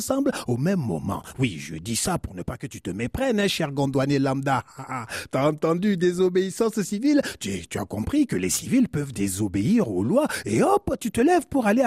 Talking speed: 200 wpm